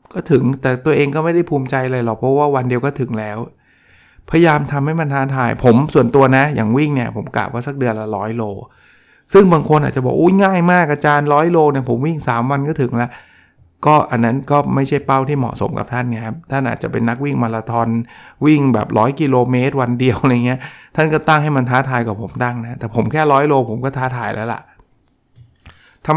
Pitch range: 115-145 Hz